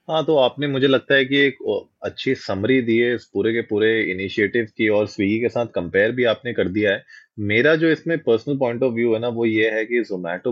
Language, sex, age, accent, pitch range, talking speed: Hindi, male, 20-39, native, 105-130 Hz, 240 wpm